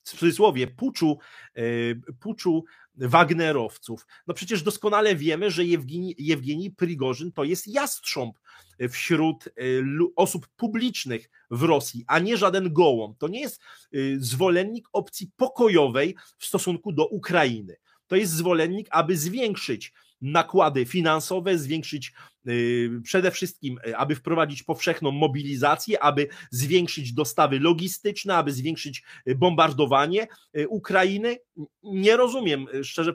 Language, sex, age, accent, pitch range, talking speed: Polish, male, 30-49, native, 135-175 Hz, 110 wpm